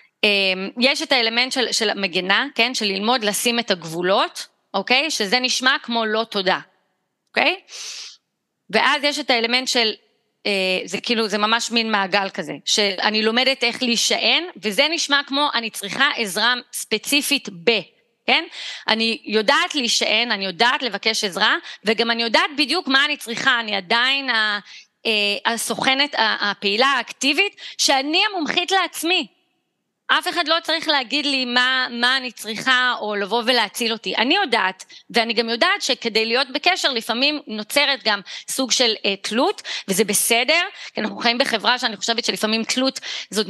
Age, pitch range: 30-49, 215-275 Hz